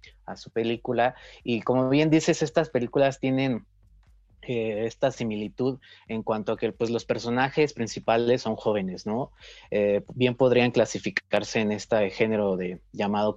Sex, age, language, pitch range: male, 30-49, Spanish, 105-130 Hz